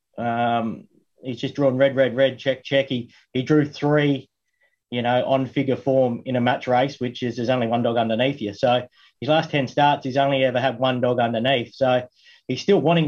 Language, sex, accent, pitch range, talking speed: English, male, Australian, 125-140 Hz, 210 wpm